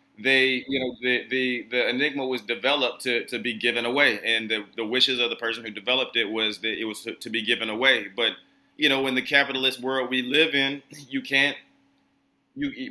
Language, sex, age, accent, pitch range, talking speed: English, male, 30-49, American, 115-135 Hz, 215 wpm